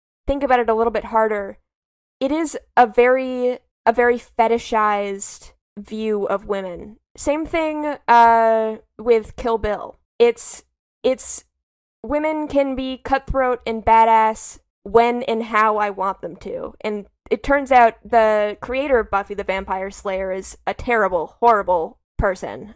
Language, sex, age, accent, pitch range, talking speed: English, female, 10-29, American, 205-245 Hz, 140 wpm